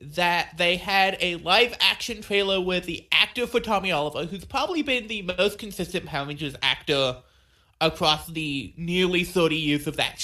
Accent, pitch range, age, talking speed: American, 150-195 Hz, 20-39, 165 wpm